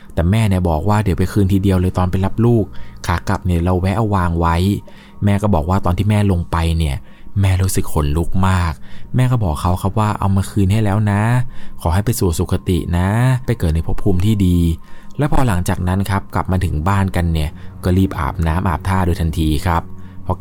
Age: 20-39